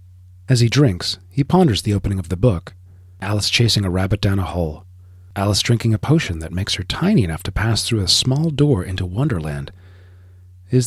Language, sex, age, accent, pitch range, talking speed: English, male, 40-59, American, 90-130 Hz, 195 wpm